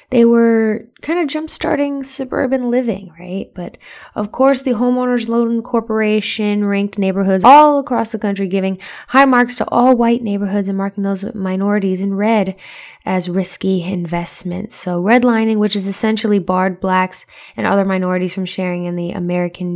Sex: female